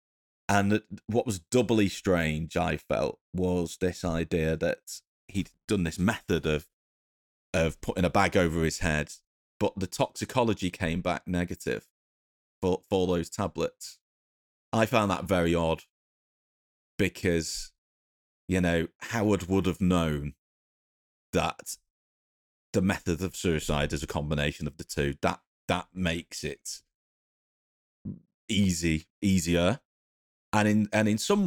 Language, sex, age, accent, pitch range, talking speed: English, male, 30-49, British, 80-95 Hz, 130 wpm